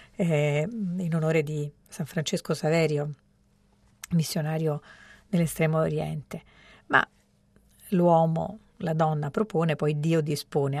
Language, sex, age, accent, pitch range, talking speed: Italian, female, 50-69, native, 160-185 Hz, 100 wpm